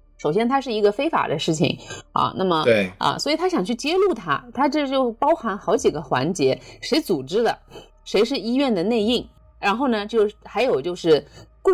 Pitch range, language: 185-265 Hz, Chinese